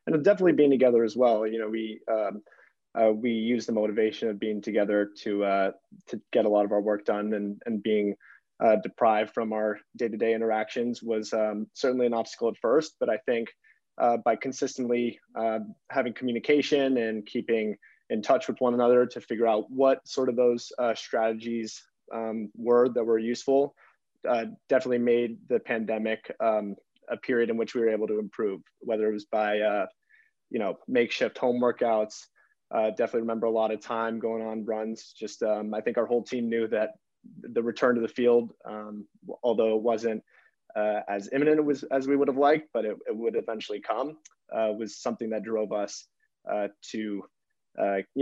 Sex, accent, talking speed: male, American, 190 wpm